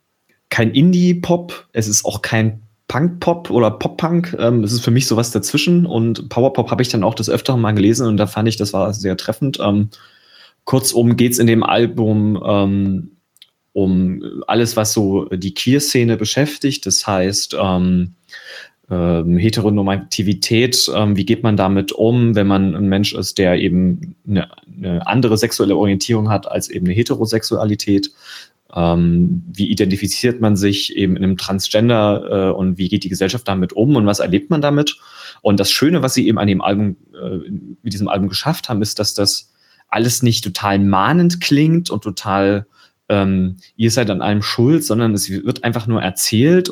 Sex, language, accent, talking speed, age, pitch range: male, German, German, 175 wpm, 30-49, 95-120 Hz